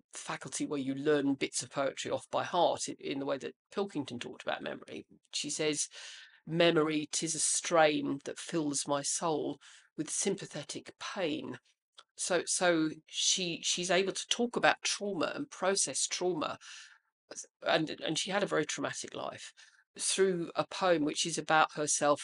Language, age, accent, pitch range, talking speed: English, 40-59, British, 150-195 Hz, 155 wpm